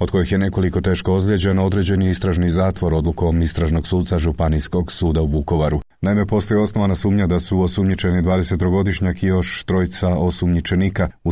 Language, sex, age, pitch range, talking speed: Croatian, male, 40-59, 85-95 Hz, 155 wpm